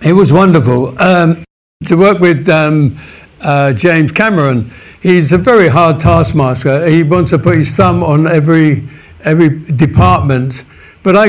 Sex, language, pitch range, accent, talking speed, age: male, English, 150-175 Hz, British, 150 wpm, 60-79